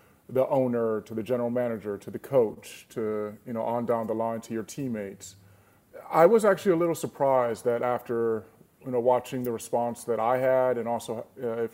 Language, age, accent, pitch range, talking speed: English, 30-49, American, 115-130 Hz, 200 wpm